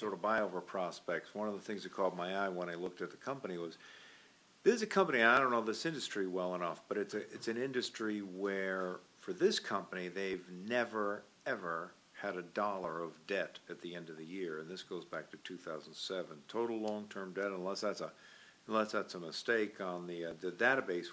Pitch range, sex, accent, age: 95-125 Hz, male, American, 50-69